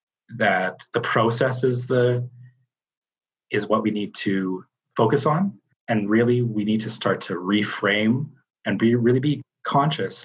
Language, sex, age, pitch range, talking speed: English, male, 30-49, 105-125 Hz, 145 wpm